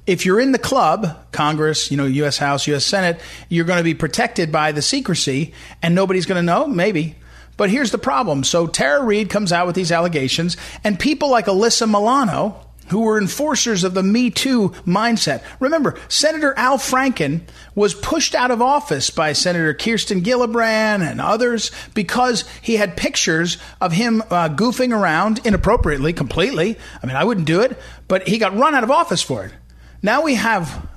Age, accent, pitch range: 40-59, American, 155-220 Hz